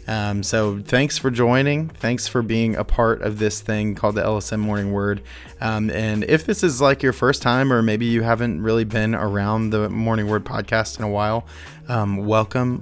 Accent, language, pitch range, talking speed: American, English, 105-120 Hz, 200 wpm